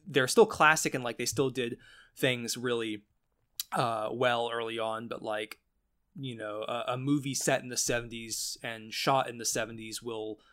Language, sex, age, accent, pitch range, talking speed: English, male, 20-39, American, 110-130 Hz, 175 wpm